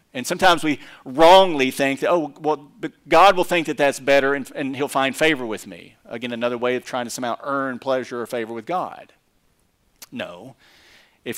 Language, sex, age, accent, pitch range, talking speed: English, male, 50-69, American, 115-155 Hz, 190 wpm